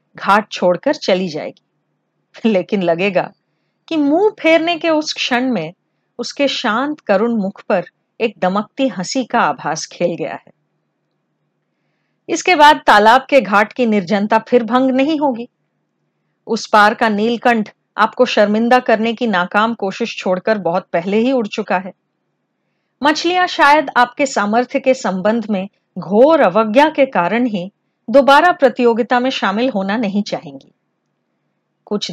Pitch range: 205-285 Hz